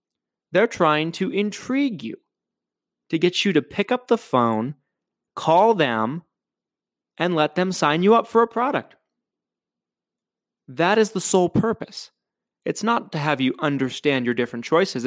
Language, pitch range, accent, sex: English, 130-185 Hz, American, male